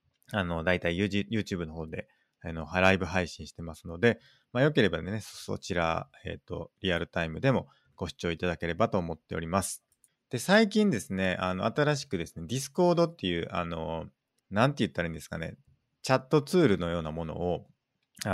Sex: male